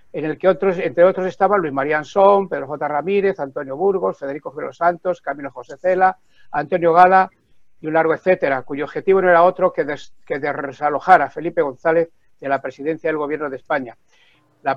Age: 60-79